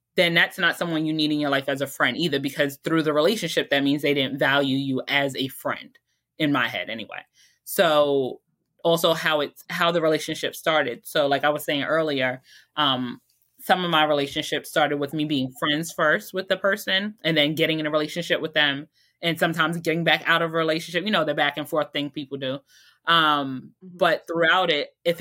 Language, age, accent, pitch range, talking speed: English, 20-39, American, 150-175 Hz, 210 wpm